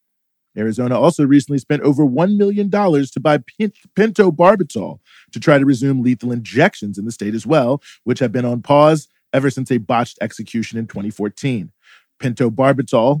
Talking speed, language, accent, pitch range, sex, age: 155 wpm, English, American, 120-150 Hz, male, 40-59